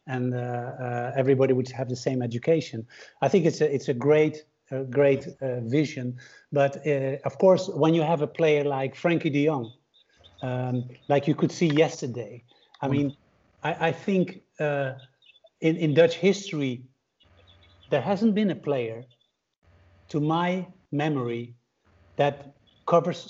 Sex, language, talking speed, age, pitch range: male, English, 150 wpm, 50-69, 135-180 Hz